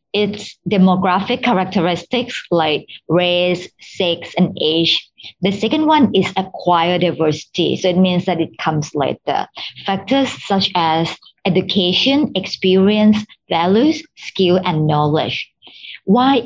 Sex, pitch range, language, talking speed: male, 170-205 Hz, English, 115 wpm